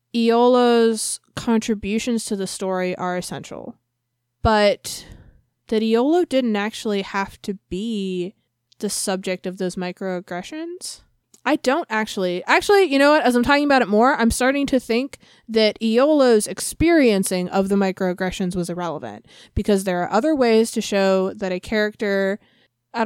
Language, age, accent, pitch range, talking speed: English, 20-39, American, 185-235 Hz, 145 wpm